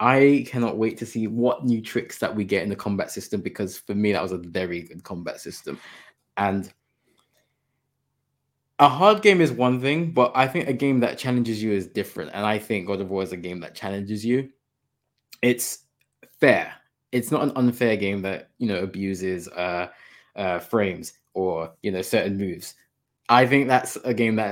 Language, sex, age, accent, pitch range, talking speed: English, male, 20-39, British, 105-135 Hz, 195 wpm